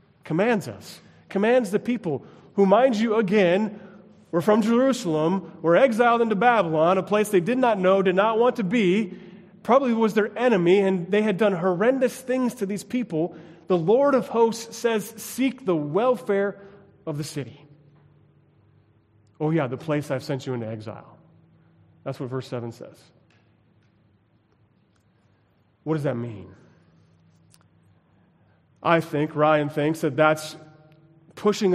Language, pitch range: English, 155-205 Hz